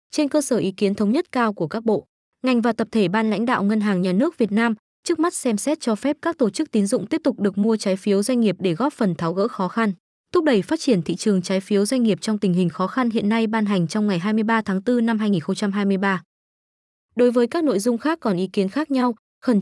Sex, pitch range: female, 200-250 Hz